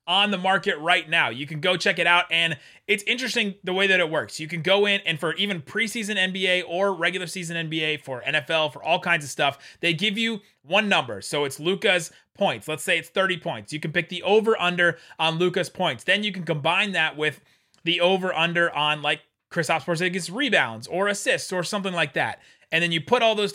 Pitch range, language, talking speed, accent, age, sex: 150-185 Hz, English, 225 wpm, American, 30-49, male